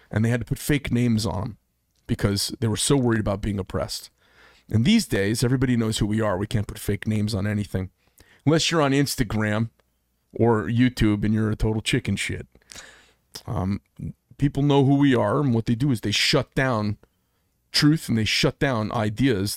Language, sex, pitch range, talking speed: English, male, 100-120 Hz, 195 wpm